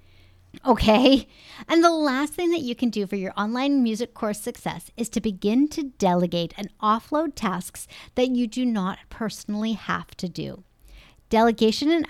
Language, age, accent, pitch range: English, 50-69, American, 180-240 Hz